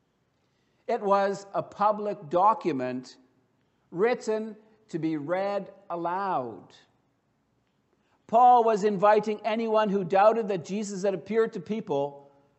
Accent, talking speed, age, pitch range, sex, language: American, 105 wpm, 60-79, 165-210 Hz, male, English